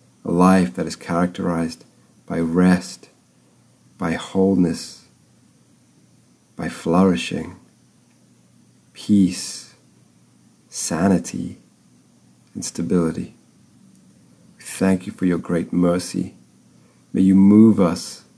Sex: male